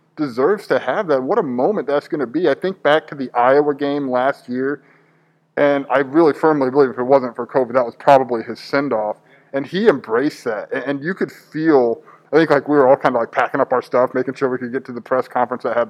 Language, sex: English, male